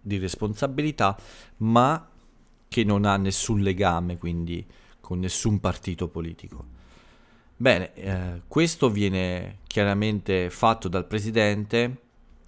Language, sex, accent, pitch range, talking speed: Italian, male, native, 90-110 Hz, 100 wpm